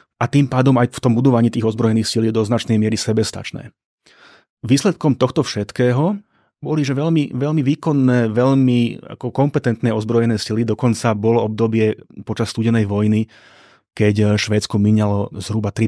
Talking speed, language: 140 wpm, Slovak